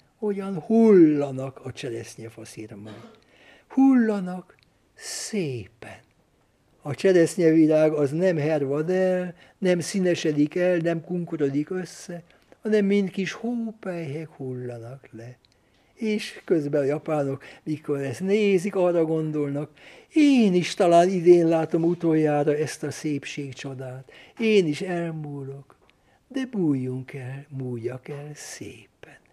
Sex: male